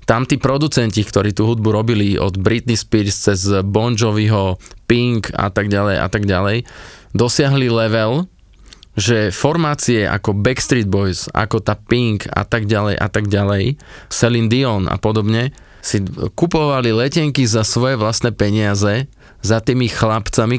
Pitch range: 105-130 Hz